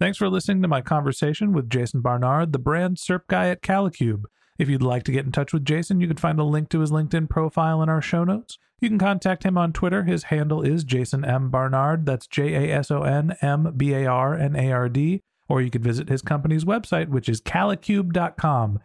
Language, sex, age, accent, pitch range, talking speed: English, male, 40-59, American, 135-180 Hz, 195 wpm